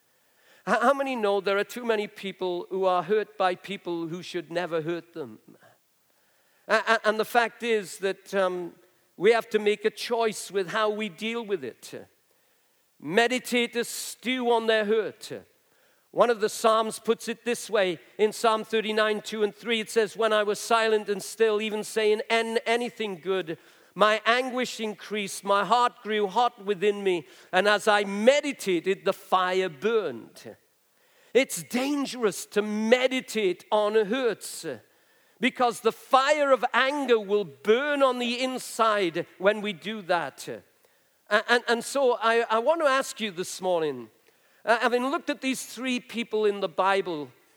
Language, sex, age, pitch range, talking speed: English, male, 50-69, 195-240 Hz, 155 wpm